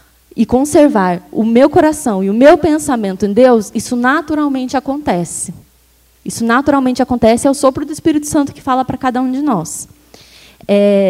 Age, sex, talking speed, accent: 20-39, female, 170 wpm, Brazilian